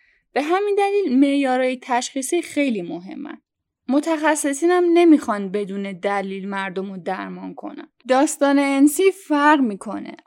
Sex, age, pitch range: female, 10-29, 220-295 Hz